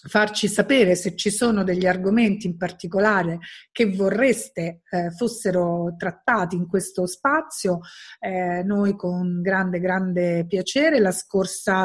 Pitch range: 180-220 Hz